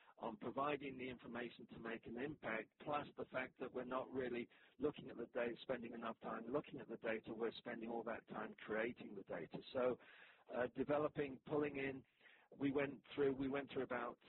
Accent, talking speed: British, 195 wpm